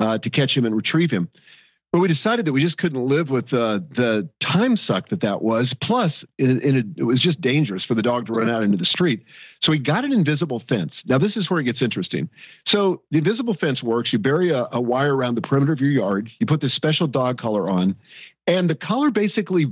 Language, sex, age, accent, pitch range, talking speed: English, male, 50-69, American, 125-175 Hz, 240 wpm